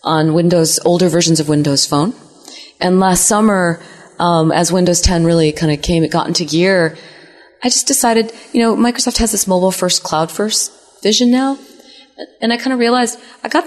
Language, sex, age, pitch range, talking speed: English, female, 30-49, 155-215 Hz, 190 wpm